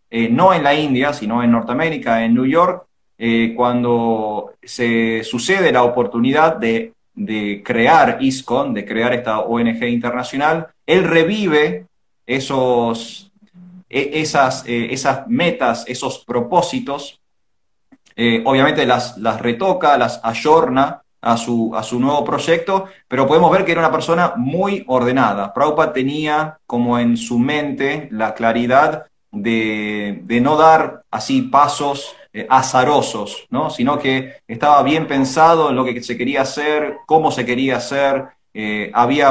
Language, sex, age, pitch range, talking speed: Spanish, male, 30-49, 120-150 Hz, 140 wpm